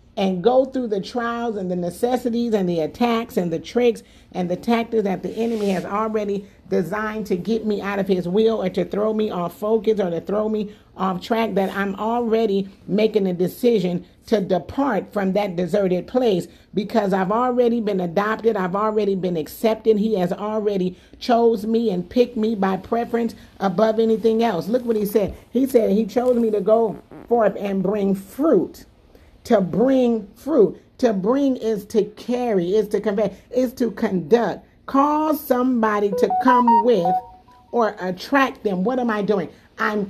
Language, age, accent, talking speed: English, 50-69, American, 175 wpm